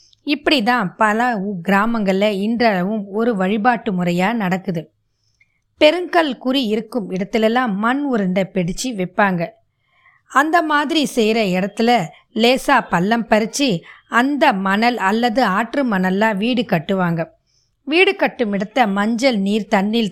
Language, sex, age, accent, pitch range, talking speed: Tamil, female, 20-39, native, 195-245 Hz, 110 wpm